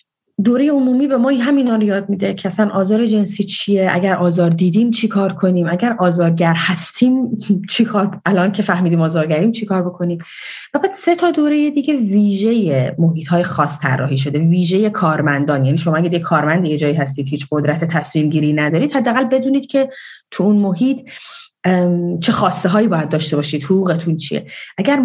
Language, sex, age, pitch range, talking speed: Persian, female, 30-49, 165-210 Hz, 165 wpm